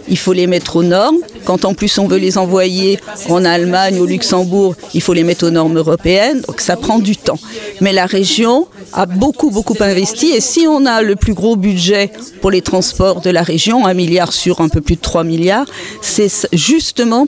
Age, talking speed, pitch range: 50-69, 215 wpm, 185-225 Hz